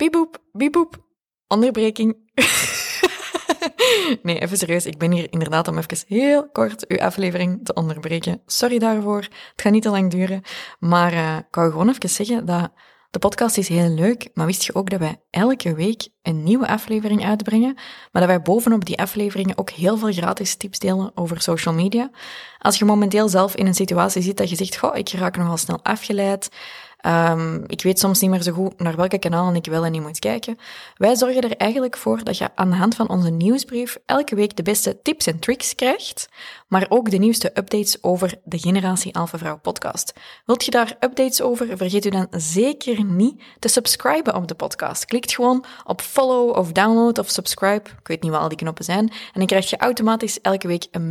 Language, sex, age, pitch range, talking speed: Dutch, female, 20-39, 175-235 Hz, 200 wpm